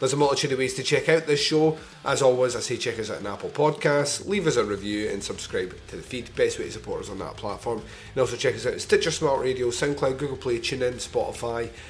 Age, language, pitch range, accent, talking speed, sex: 30-49, English, 115-160 Hz, British, 255 wpm, male